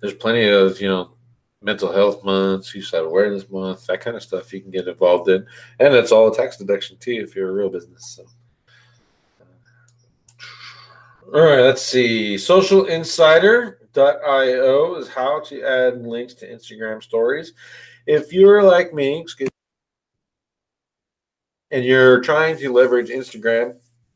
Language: English